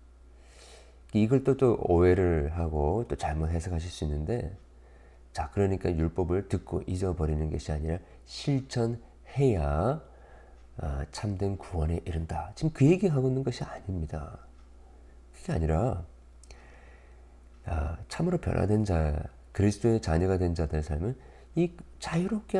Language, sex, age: Korean, male, 40-59